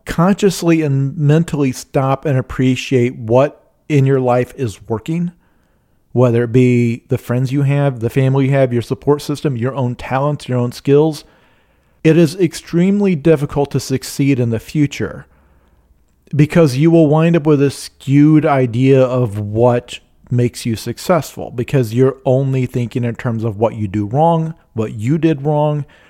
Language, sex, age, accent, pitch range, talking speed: English, male, 40-59, American, 120-160 Hz, 160 wpm